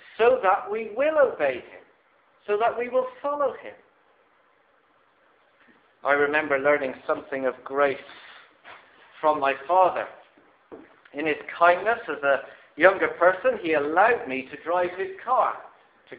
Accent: British